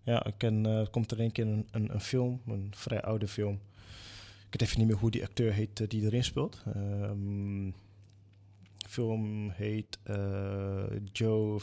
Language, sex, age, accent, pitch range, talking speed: Dutch, male, 20-39, Dutch, 100-105 Hz, 175 wpm